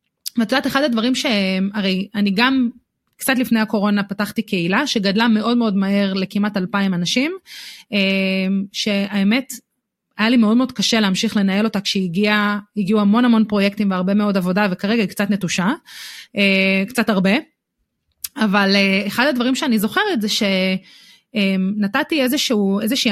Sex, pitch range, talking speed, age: female, 195-235 Hz, 135 wpm, 30-49